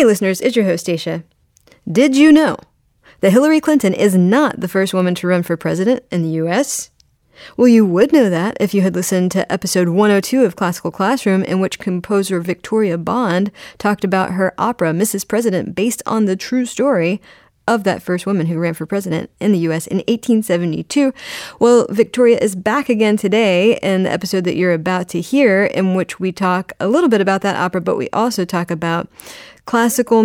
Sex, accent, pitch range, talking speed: female, American, 175-220 Hz, 195 wpm